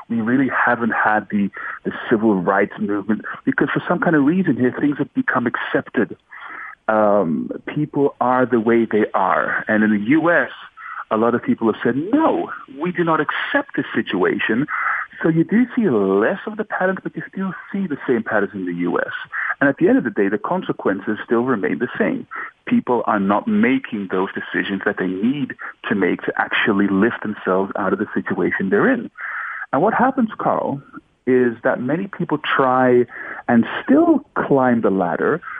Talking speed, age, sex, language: 185 wpm, 40-59, male, English